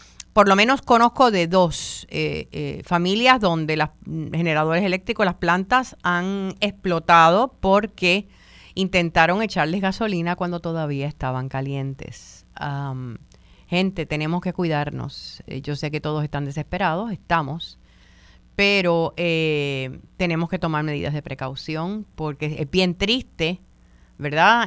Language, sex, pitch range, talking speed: Spanish, female, 145-180 Hz, 120 wpm